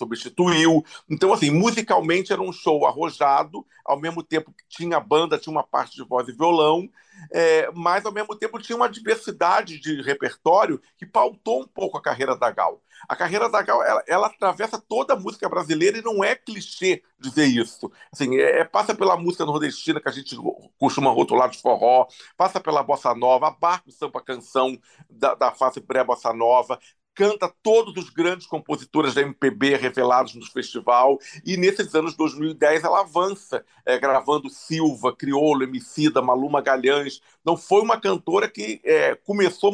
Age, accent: 50-69, Brazilian